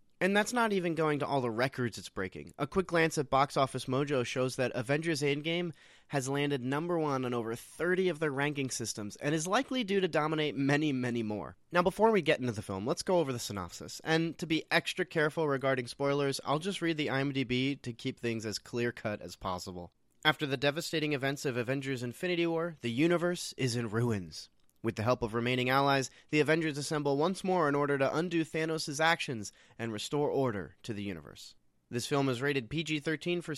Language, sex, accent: English, male, American